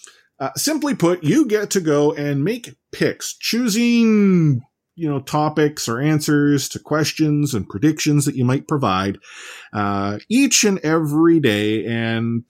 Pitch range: 115-155 Hz